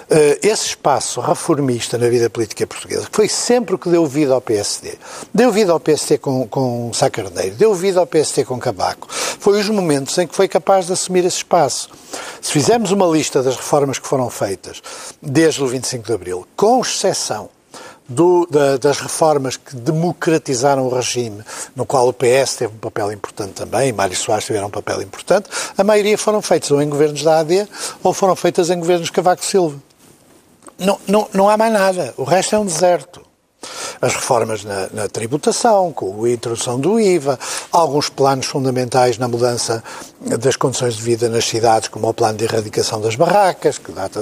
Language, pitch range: Portuguese, 125-190 Hz